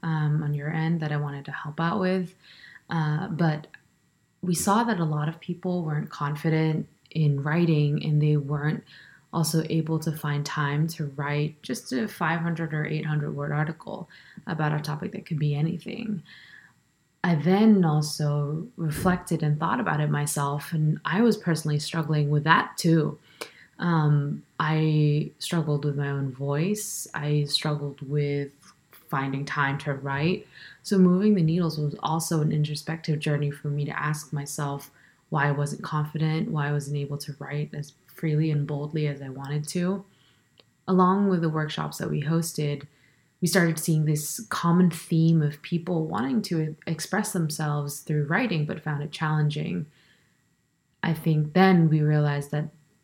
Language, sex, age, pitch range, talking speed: English, female, 20-39, 150-170 Hz, 160 wpm